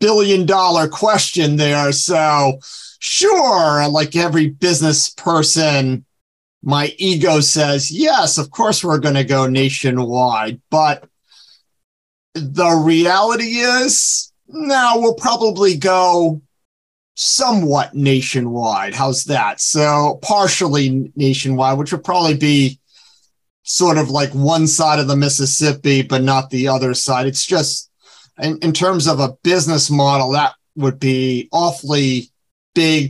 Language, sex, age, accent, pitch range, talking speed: English, male, 40-59, American, 135-165 Hz, 120 wpm